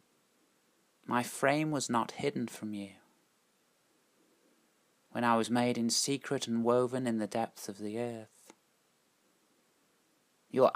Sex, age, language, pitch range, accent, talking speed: male, 30-49, English, 110-125 Hz, British, 125 wpm